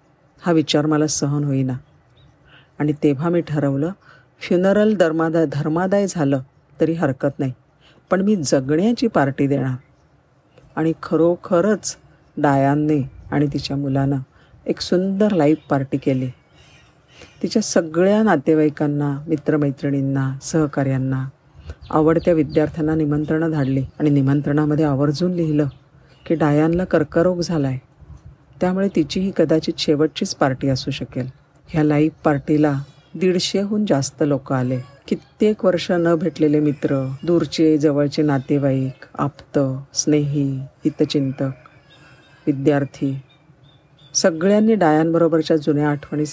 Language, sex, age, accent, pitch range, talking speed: Marathi, female, 50-69, native, 140-165 Hz, 100 wpm